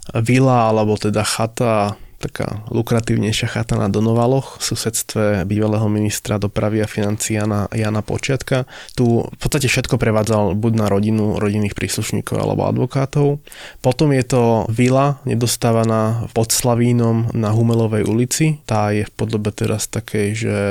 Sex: male